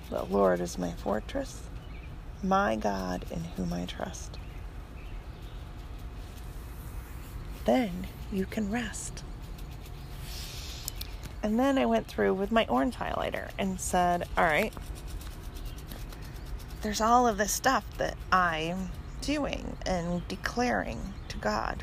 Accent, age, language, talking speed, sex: American, 40-59, English, 105 wpm, female